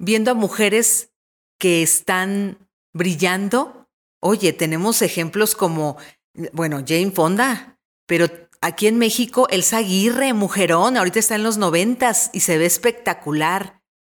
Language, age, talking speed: Spanish, 40-59, 125 wpm